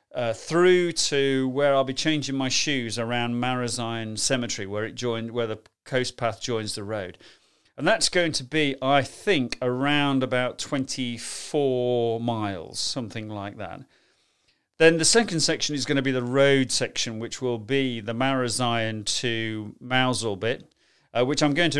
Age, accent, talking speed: 40-59, British, 165 wpm